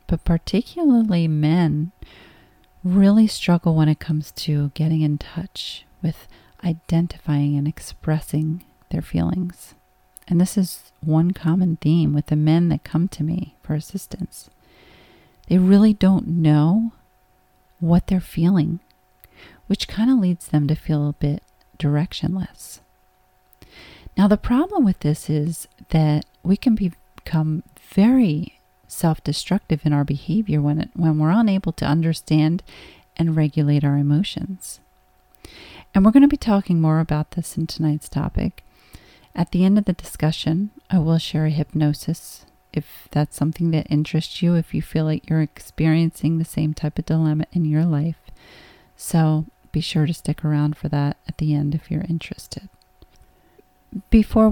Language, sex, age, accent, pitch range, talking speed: English, female, 40-59, American, 155-180 Hz, 145 wpm